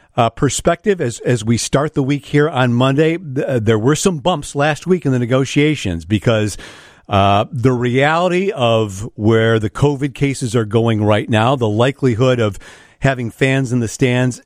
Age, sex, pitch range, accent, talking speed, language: 50-69, male, 115-140 Hz, American, 175 wpm, English